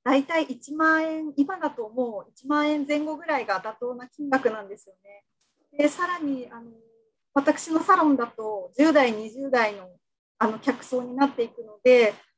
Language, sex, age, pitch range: Japanese, female, 40-59, 235-295 Hz